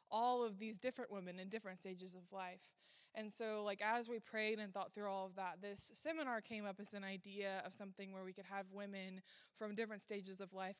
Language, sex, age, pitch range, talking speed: English, female, 20-39, 190-220 Hz, 230 wpm